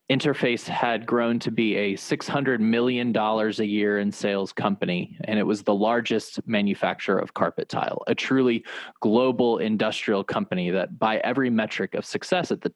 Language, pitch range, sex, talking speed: English, 105-150 Hz, male, 165 wpm